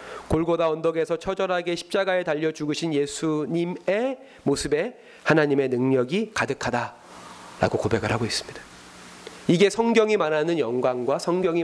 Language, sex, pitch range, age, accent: Korean, male, 125-185 Hz, 30-49, native